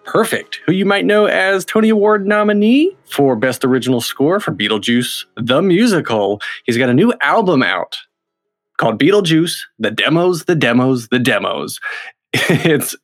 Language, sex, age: English, male, 30-49